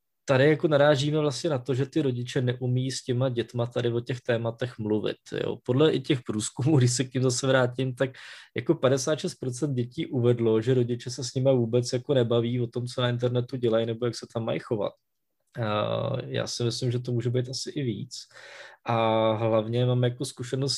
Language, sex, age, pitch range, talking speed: Czech, male, 20-39, 115-130 Hz, 200 wpm